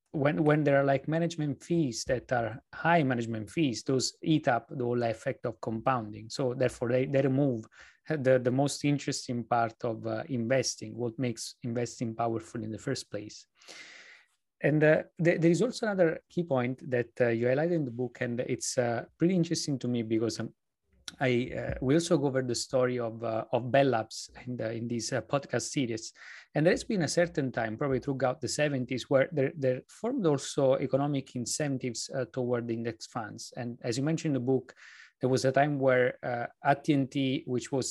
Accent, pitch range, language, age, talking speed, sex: Italian, 120-140 Hz, English, 30-49, 190 wpm, male